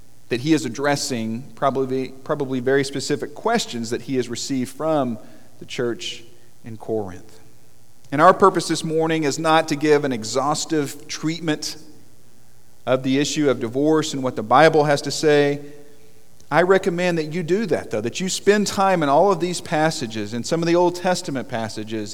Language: English